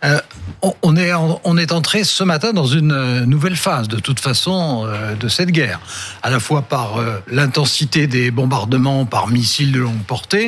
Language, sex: French, male